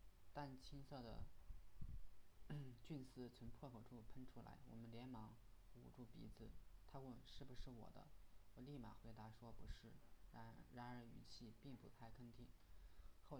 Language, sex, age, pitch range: Chinese, male, 20-39, 105-125 Hz